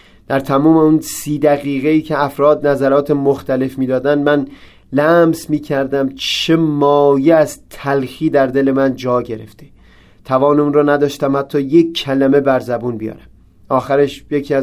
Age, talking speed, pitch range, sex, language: 30-49, 140 wpm, 130-150 Hz, male, Persian